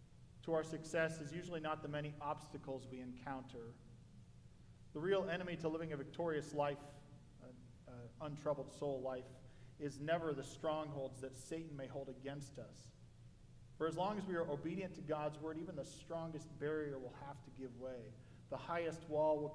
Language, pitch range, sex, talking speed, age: English, 135-160 Hz, male, 170 wpm, 40-59